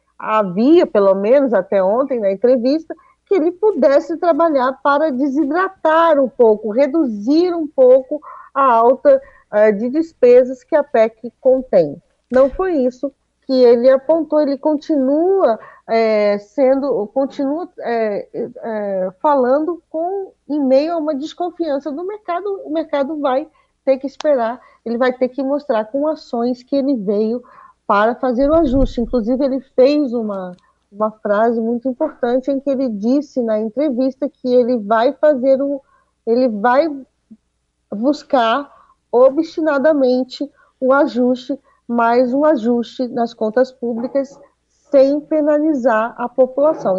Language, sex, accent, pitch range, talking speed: Portuguese, female, Brazilian, 245-300 Hz, 130 wpm